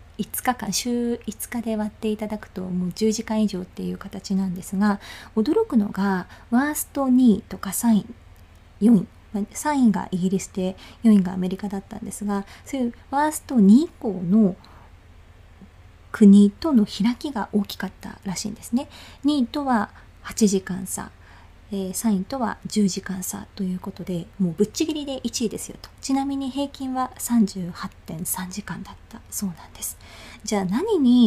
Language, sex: Japanese, female